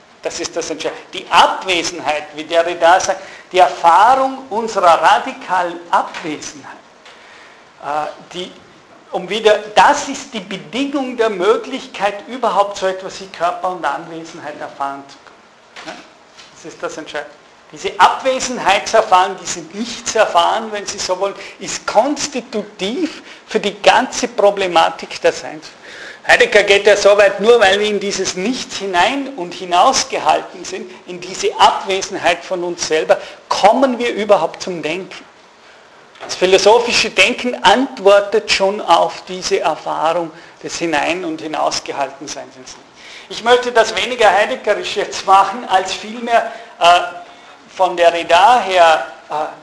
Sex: male